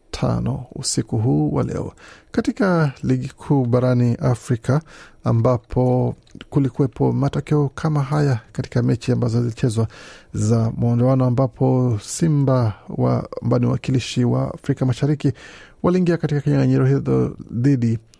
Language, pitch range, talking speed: Swahili, 115-140 Hz, 105 wpm